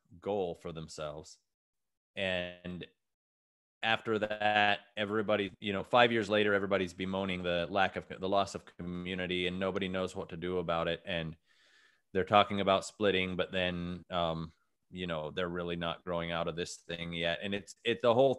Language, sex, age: English, male, 30-49